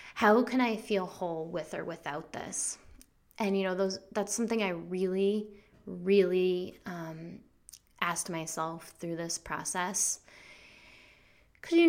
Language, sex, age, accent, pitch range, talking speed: English, female, 20-39, American, 165-195 Hz, 125 wpm